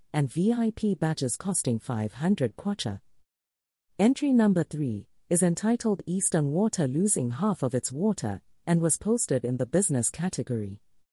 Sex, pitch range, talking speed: female, 120-195 Hz, 135 wpm